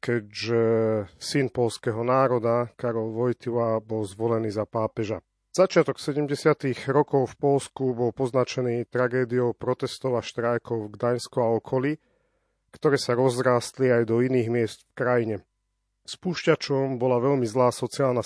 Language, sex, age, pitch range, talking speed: Slovak, male, 40-59, 115-130 Hz, 130 wpm